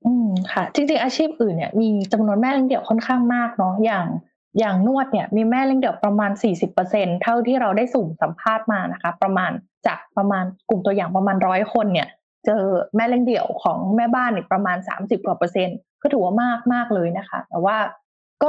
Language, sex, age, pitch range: Thai, female, 20-39, 195-245 Hz